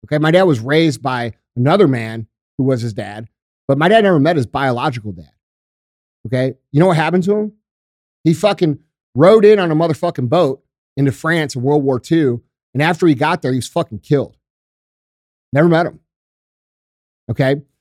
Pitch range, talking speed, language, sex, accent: 125-175 Hz, 180 wpm, English, male, American